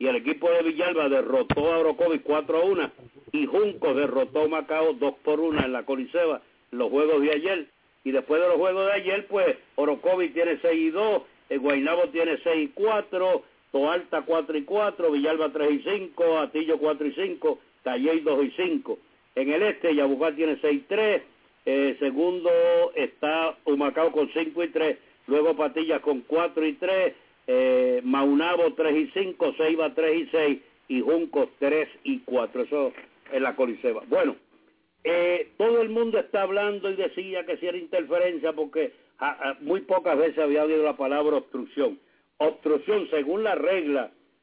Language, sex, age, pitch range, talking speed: English, male, 60-79, 155-255 Hz, 175 wpm